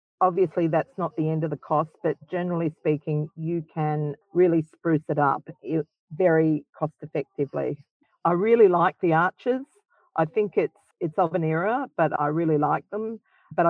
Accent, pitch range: Australian, 155-195 Hz